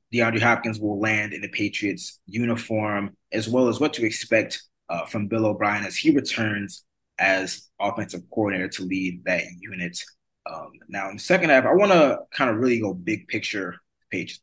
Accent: American